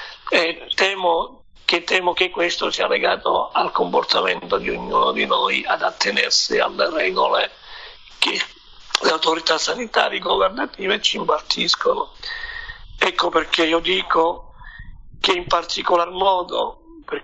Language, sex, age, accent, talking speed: Italian, male, 50-69, native, 115 wpm